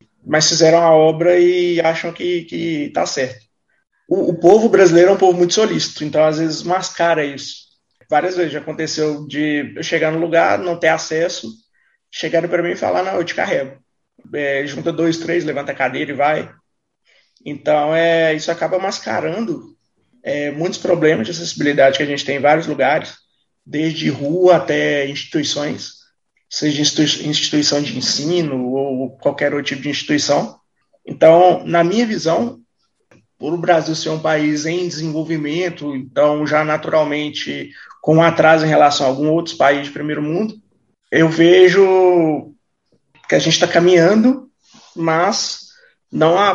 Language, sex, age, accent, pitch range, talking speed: Portuguese, male, 20-39, Brazilian, 150-175 Hz, 155 wpm